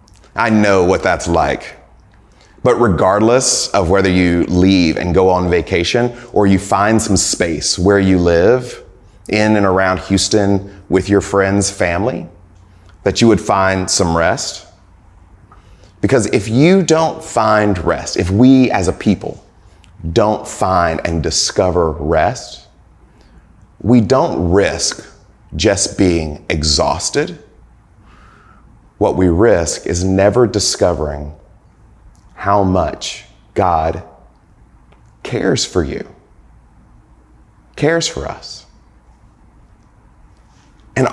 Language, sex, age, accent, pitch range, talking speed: English, male, 30-49, American, 90-110 Hz, 110 wpm